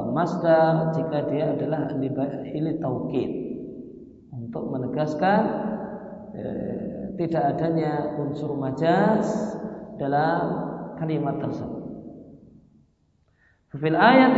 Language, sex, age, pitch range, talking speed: Indonesian, male, 50-69, 145-195 Hz, 75 wpm